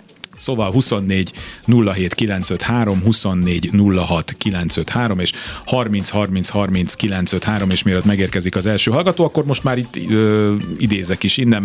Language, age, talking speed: Hungarian, 40-59, 135 wpm